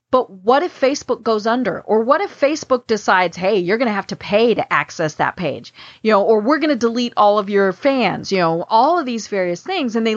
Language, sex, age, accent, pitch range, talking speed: English, female, 40-59, American, 195-270 Hz, 250 wpm